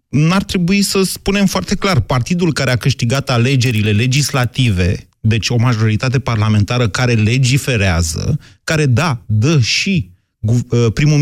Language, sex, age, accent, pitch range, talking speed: Romanian, male, 30-49, native, 110-150 Hz, 125 wpm